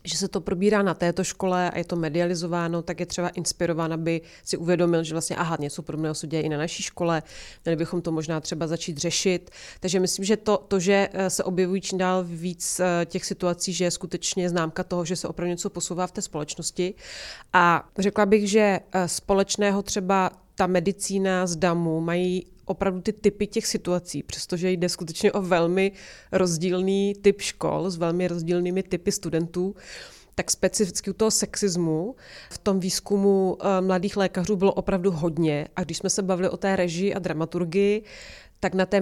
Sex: female